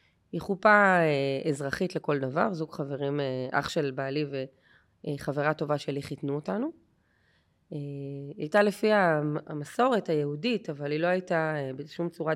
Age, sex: 20-39, female